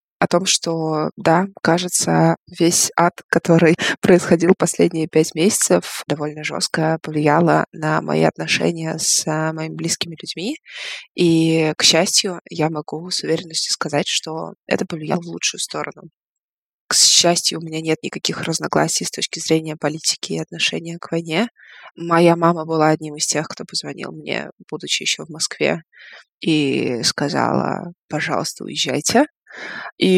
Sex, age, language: female, 20-39, Russian